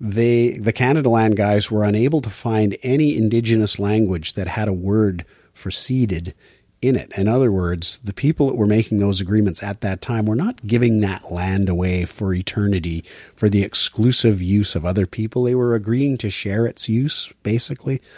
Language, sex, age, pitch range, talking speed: English, male, 40-59, 95-115 Hz, 185 wpm